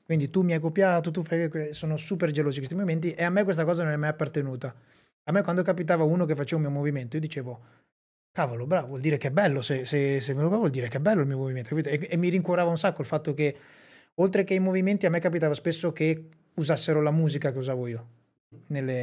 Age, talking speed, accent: 30-49, 250 wpm, native